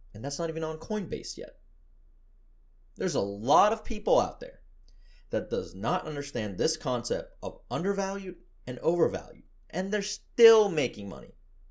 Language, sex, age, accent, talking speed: English, male, 30-49, American, 150 wpm